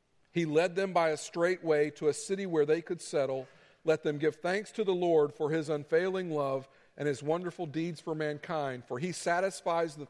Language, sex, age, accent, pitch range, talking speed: English, male, 50-69, American, 135-175 Hz, 210 wpm